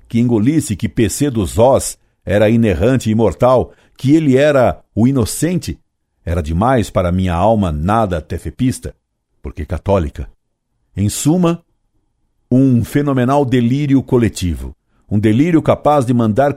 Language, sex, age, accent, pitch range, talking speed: Portuguese, male, 60-79, Brazilian, 95-130 Hz, 125 wpm